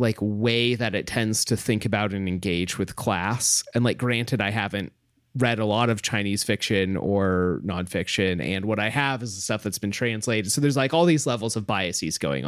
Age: 30-49